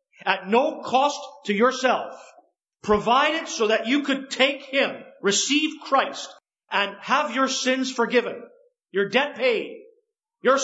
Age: 50-69